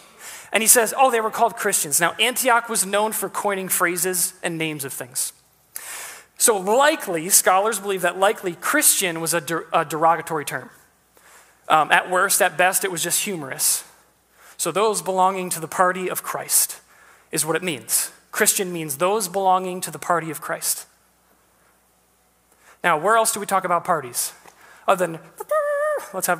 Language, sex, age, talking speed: English, male, 30-49, 165 wpm